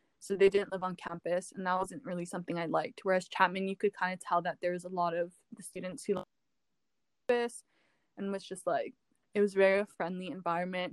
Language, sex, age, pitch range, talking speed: English, female, 10-29, 180-210 Hz, 225 wpm